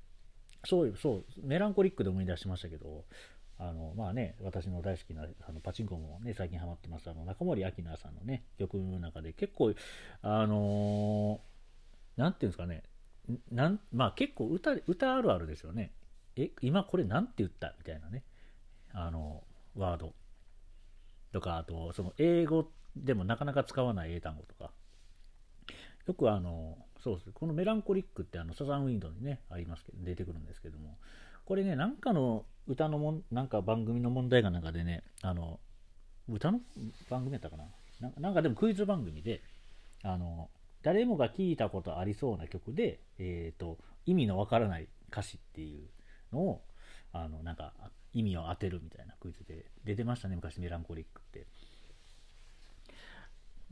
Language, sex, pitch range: Japanese, male, 85-125 Hz